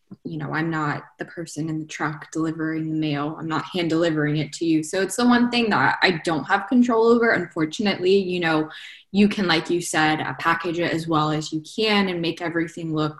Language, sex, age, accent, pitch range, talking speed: English, female, 10-29, American, 155-190 Hz, 225 wpm